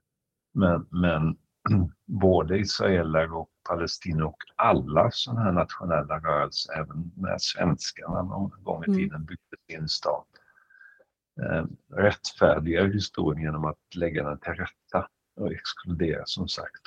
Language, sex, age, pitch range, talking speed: Swedish, male, 50-69, 80-95 Hz, 125 wpm